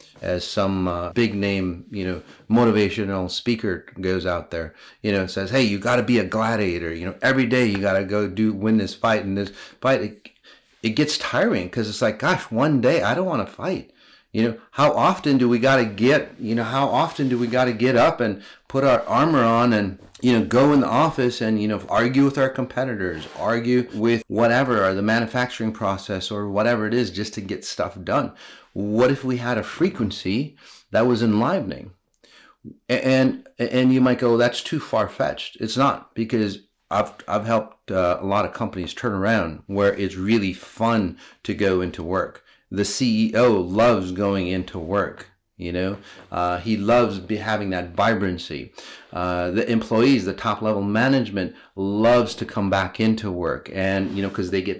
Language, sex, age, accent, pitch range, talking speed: English, male, 30-49, American, 95-120 Hz, 195 wpm